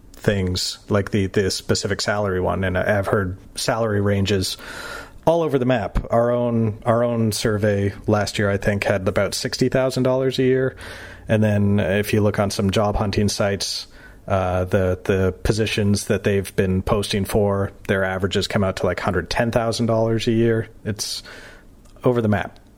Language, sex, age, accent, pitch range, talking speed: English, male, 40-59, American, 100-115 Hz, 165 wpm